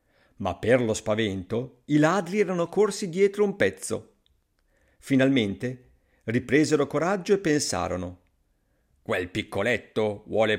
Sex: male